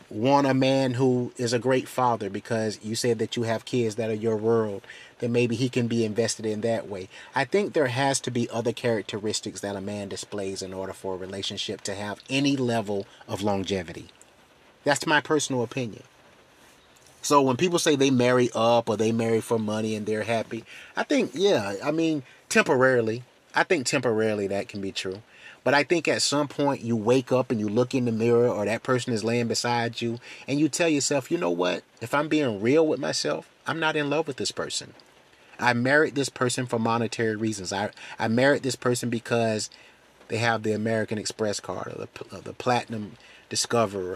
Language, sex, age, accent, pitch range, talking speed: English, male, 30-49, American, 105-130 Hz, 205 wpm